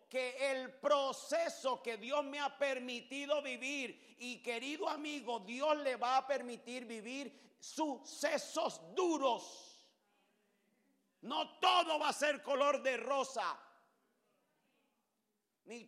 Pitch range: 260-315 Hz